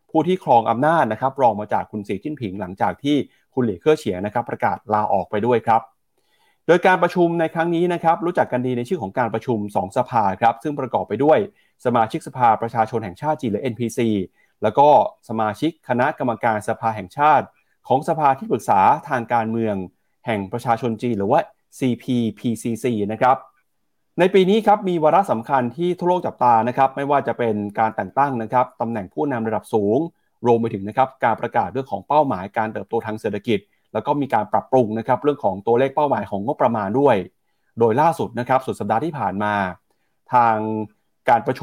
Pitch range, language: 110-150 Hz, Thai